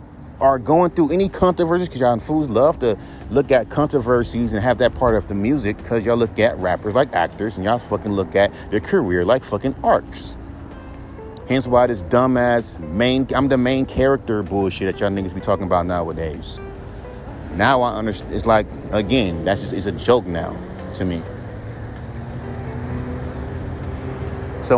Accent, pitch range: American, 100-145 Hz